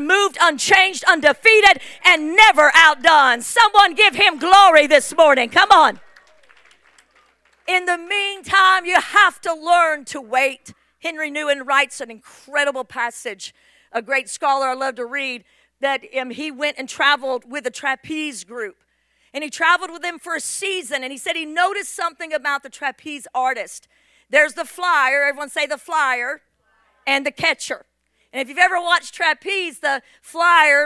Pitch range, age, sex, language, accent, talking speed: 265-335 Hz, 50-69, female, English, American, 160 wpm